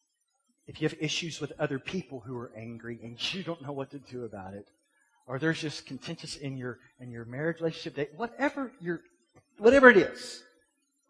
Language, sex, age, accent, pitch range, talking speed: English, male, 30-49, American, 125-165 Hz, 180 wpm